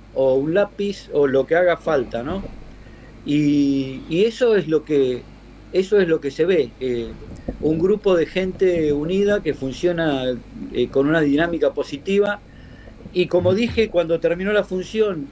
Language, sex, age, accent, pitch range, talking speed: Spanish, male, 50-69, Argentinian, 135-190 Hz, 160 wpm